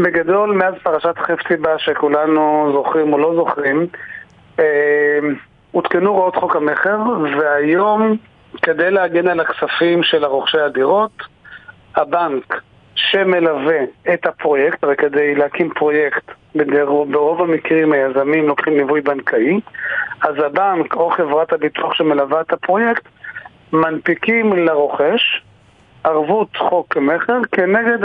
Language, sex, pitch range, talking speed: Hebrew, male, 150-175 Hz, 105 wpm